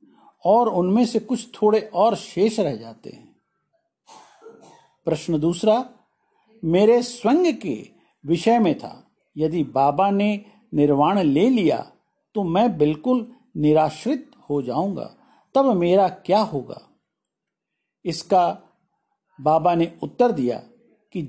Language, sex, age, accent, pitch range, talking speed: Hindi, male, 50-69, native, 160-235 Hz, 115 wpm